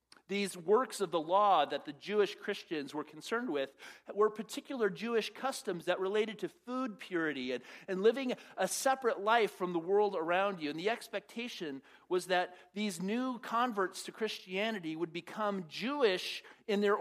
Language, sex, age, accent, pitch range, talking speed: English, male, 40-59, American, 175-225 Hz, 165 wpm